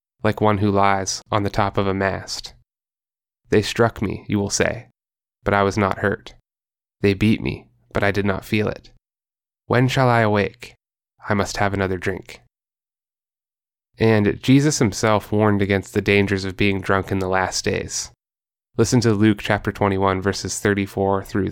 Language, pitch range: English, 100-105 Hz